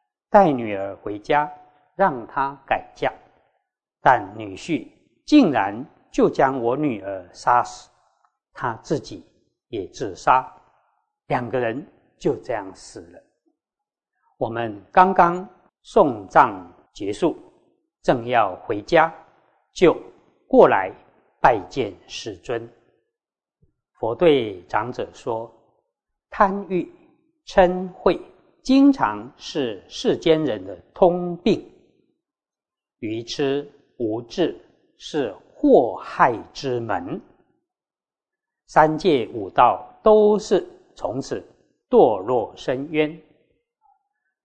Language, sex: Chinese, male